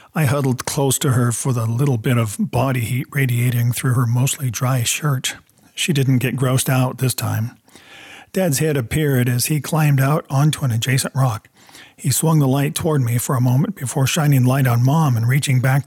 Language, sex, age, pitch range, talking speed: English, male, 50-69, 120-150 Hz, 200 wpm